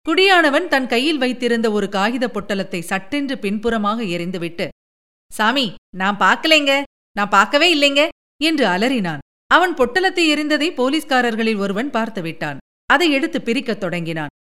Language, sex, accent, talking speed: Tamil, female, native, 115 wpm